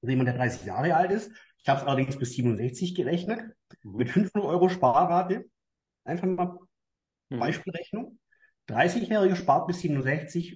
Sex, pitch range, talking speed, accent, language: male, 120-175 Hz, 140 wpm, German, German